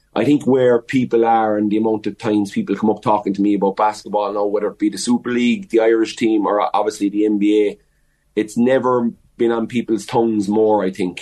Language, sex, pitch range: English, male, 105-110 Hz